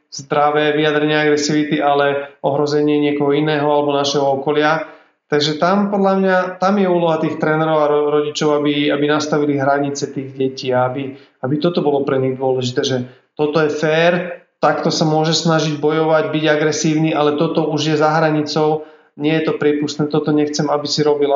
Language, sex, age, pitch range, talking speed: Slovak, male, 30-49, 145-160 Hz, 170 wpm